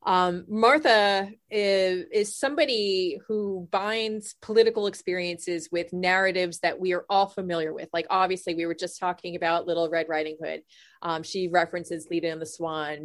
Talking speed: 160 wpm